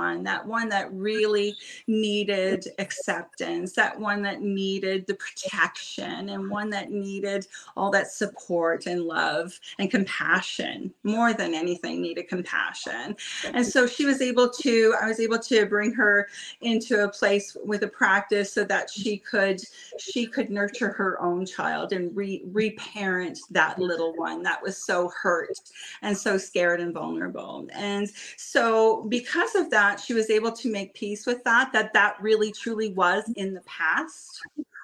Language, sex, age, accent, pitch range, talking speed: English, female, 30-49, American, 190-220 Hz, 160 wpm